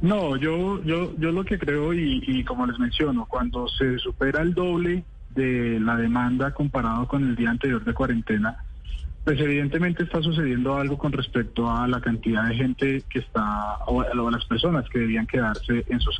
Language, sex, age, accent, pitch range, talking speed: Spanish, male, 30-49, Colombian, 120-160 Hz, 185 wpm